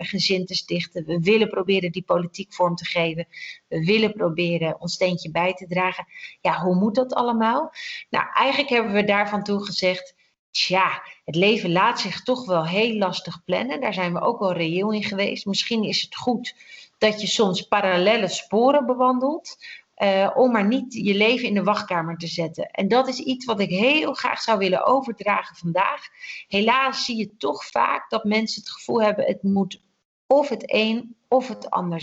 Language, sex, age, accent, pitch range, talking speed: Dutch, female, 40-59, Dutch, 180-225 Hz, 185 wpm